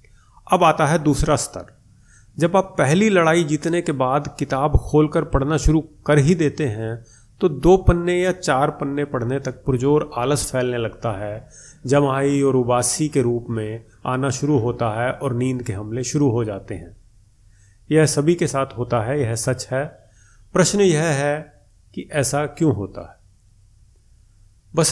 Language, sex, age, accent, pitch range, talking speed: Hindi, male, 30-49, native, 115-150 Hz, 165 wpm